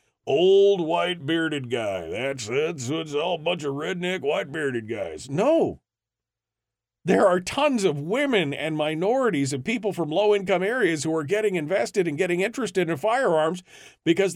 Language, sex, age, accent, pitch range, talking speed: English, male, 40-59, American, 120-185 Hz, 165 wpm